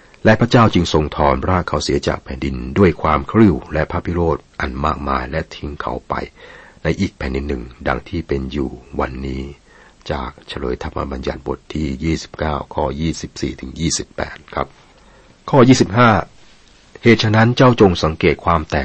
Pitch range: 65-85 Hz